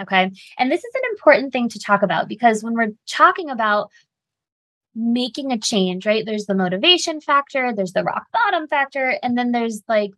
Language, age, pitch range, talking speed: English, 20-39, 200-270 Hz, 190 wpm